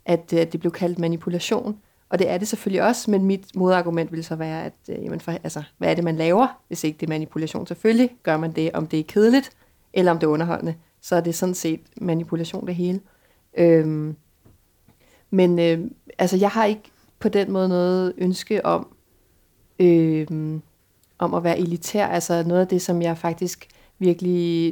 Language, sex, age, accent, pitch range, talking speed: Danish, female, 30-49, native, 160-185 Hz, 190 wpm